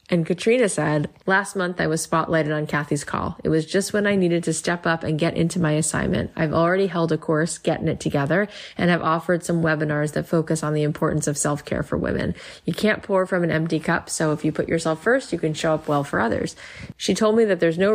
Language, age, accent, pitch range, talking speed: English, 20-39, American, 155-180 Hz, 245 wpm